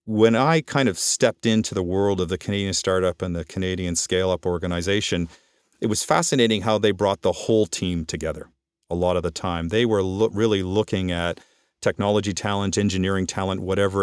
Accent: American